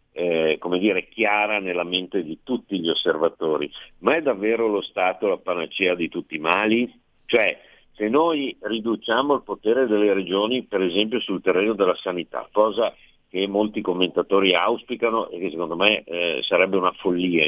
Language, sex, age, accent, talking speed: Italian, male, 50-69, native, 165 wpm